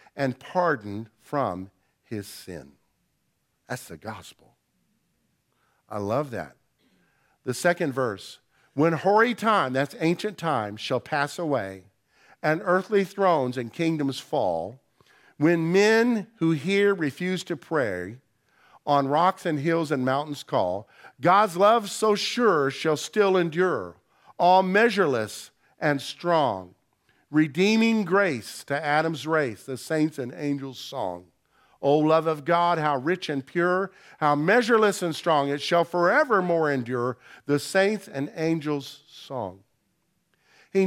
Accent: American